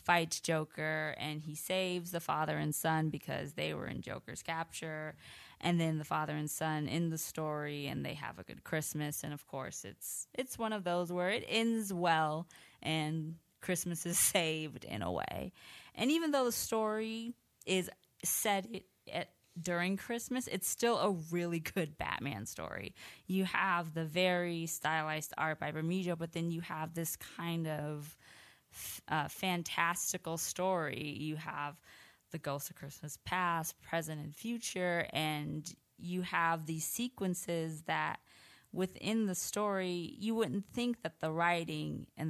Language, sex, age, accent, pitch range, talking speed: English, female, 20-39, American, 155-185 Hz, 160 wpm